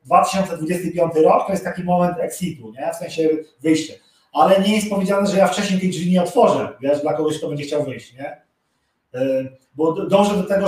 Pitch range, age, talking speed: 160-200 Hz, 30-49, 190 wpm